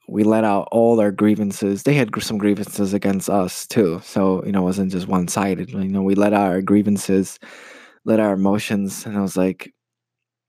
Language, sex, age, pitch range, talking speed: English, male, 20-39, 95-110 Hz, 205 wpm